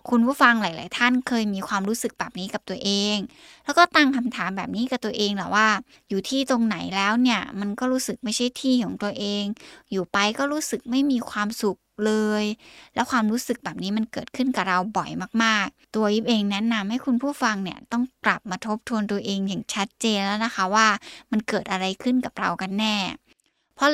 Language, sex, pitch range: Thai, female, 205-245 Hz